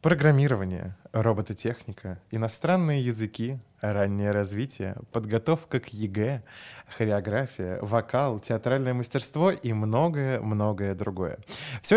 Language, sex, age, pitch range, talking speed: Russian, male, 20-39, 110-140 Hz, 85 wpm